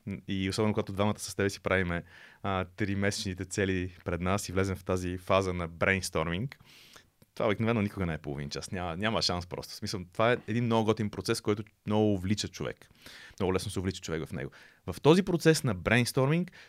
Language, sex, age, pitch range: Bulgarian, male, 30-49, 95-125 Hz